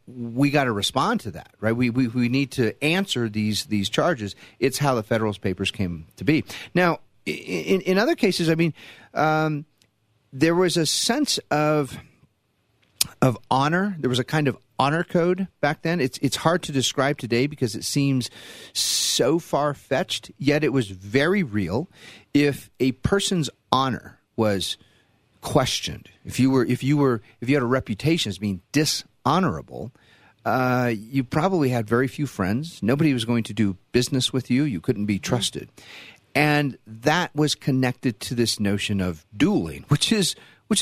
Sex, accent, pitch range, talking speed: male, American, 115-155 Hz, 170 wpm